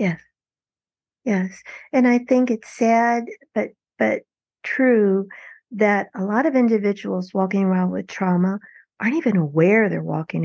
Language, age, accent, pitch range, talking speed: English, 50-69, American, 185-235 Hz, 140 wpm